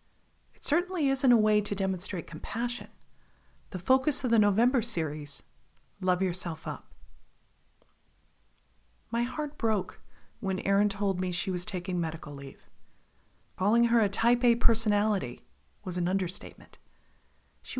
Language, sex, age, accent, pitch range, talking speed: English, female, 40-59, American, 185-240 Hz, 130 wpm